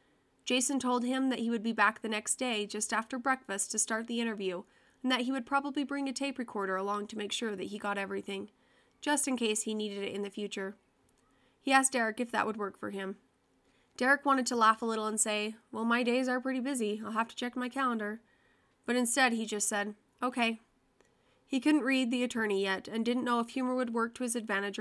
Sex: female